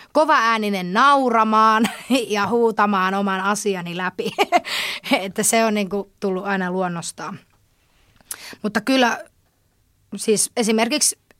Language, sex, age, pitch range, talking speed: Finnish, female, 20-39, 190-235 Hz, 100 wpm